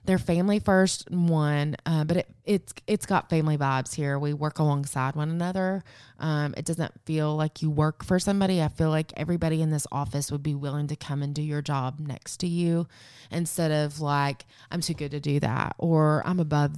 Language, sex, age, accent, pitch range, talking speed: English, female, 20-39, American, 135-160 Hz, 205 wpm